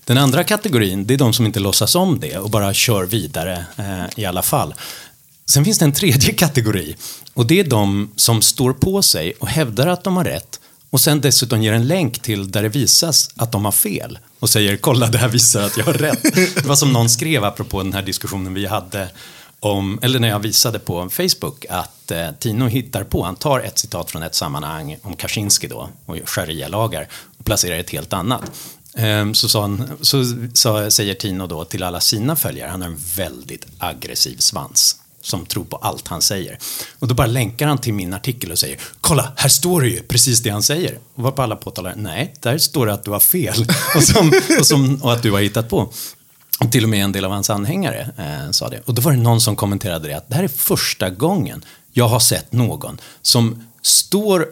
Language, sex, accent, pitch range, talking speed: English, male, Swedish, 105-140 Hz, 220 wpm